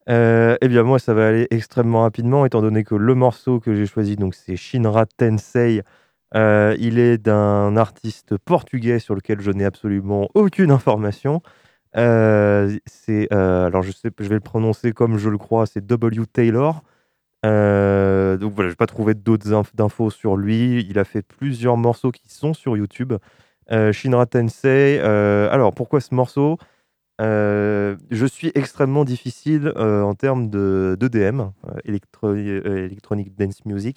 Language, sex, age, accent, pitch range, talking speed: French, male, 20-39, French, 105-130 Hz, 170 wpm